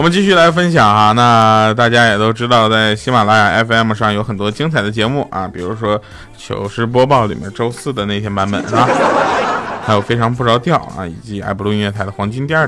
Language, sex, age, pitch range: Chinese, male, 20-39, 105-145 Hz